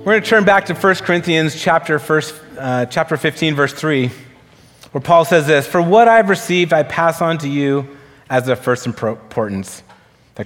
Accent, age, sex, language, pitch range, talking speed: American, 30-49, male, English, 110-150 Hz, 180 wpm